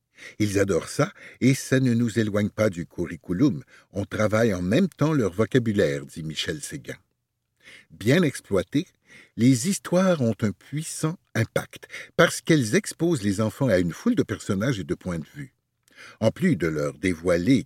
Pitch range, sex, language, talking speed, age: 100-145 Hz, male, French, 165 wpm, 60-79